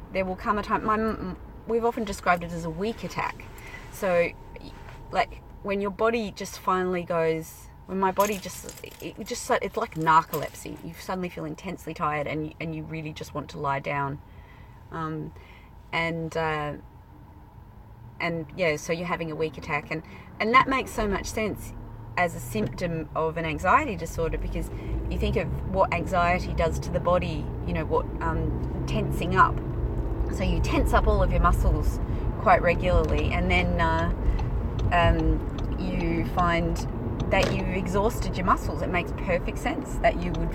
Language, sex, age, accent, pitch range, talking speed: English, female, 30-49, Australian, 115-180 Hz, 170 wpm